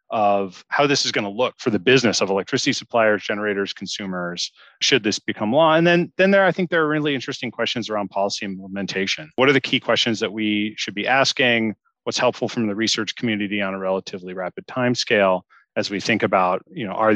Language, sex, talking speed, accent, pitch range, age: English, male, 215 wpm, American, 100-130 Hz, 30-49